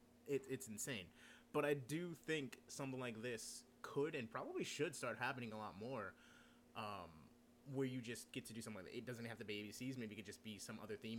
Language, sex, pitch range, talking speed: English, male, 105-130 Hz, 230 wpm